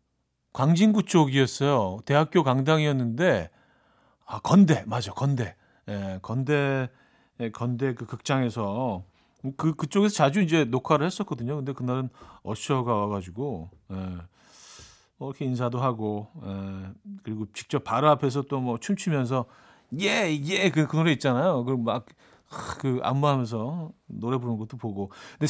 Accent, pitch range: native, 110-155 Hz